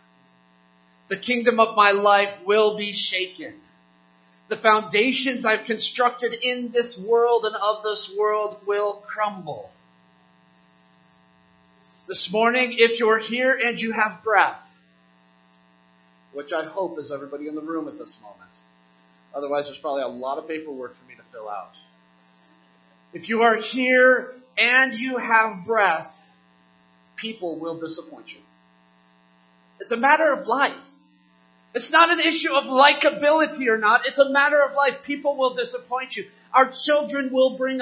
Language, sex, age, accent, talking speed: English, male, 30-49, American, 145 wpm